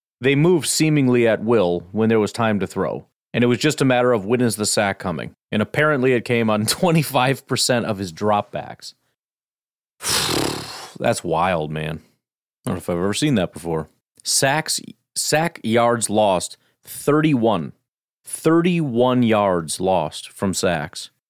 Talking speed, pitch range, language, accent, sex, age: 150 wpm, 110-145 Hz, English, American, male, 40-59